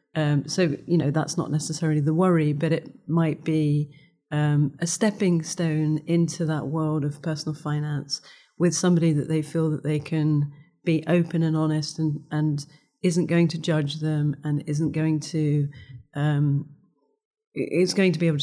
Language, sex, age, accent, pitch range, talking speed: English, female, 40-59, British, 155-175 Hz, 170 wpm